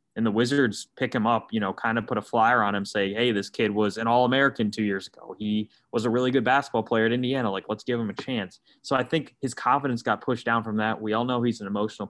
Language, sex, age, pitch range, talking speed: English, male, 20-39, 100-125 Hz, 280 wpm